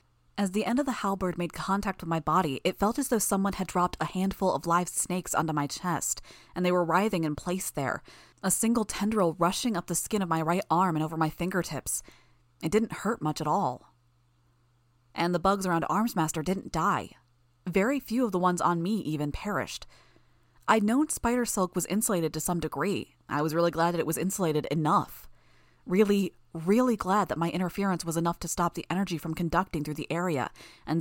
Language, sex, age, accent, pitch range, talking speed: English, female, 20-39, American, 150-195 Hz, 205 wpm